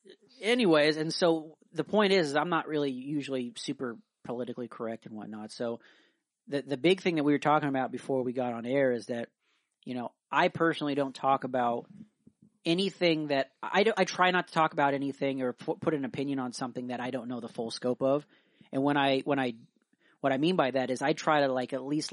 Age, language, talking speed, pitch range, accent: 40-59, English, 220 wpm, 130-165 Hz, American